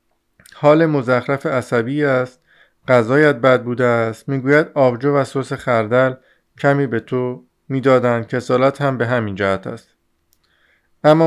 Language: Persian